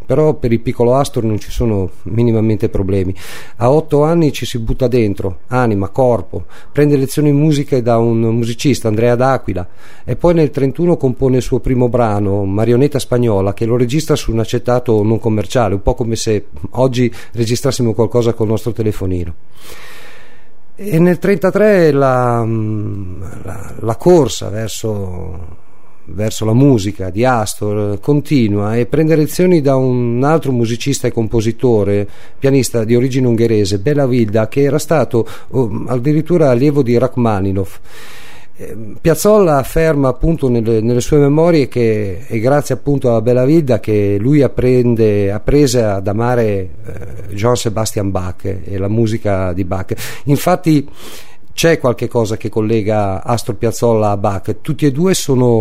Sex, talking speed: male, 150 wpm